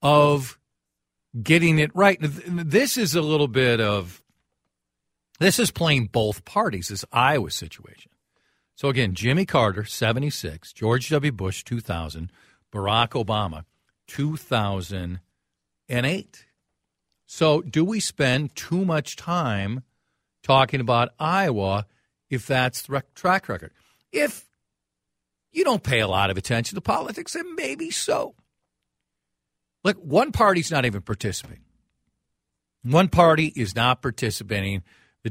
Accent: American